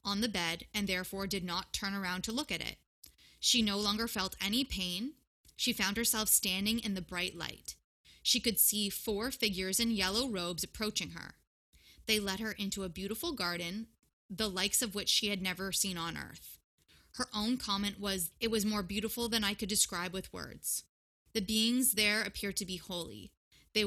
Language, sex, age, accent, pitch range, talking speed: English, female, 20-39, American, 190-225 Hz, 190 wpm